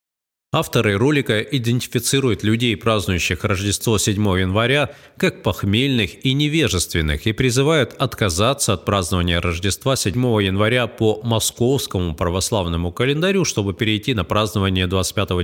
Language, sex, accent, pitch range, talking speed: Russian, male, native, 95-120 Hz, 115 wpm